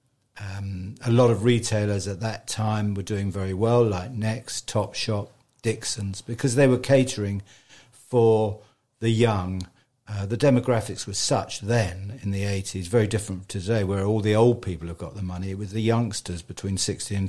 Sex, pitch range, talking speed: male, 100-125 Hz, 175 wpm